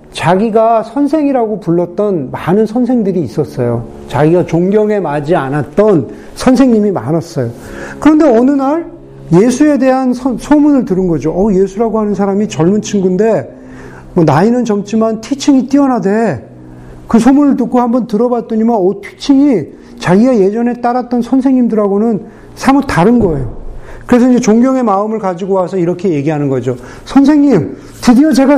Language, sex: Korean, male